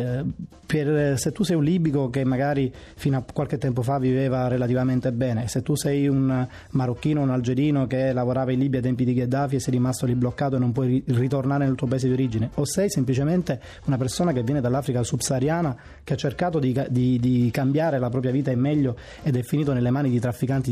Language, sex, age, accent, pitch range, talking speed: Italian, male, 20-39, native, 125-145 Hz, 210 wpm